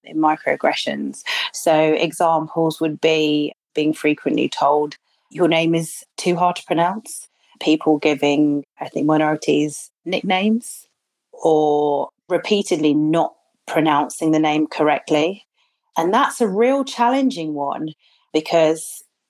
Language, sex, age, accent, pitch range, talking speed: English, female, 30-49, British, 145-170 Hz, 110 wpm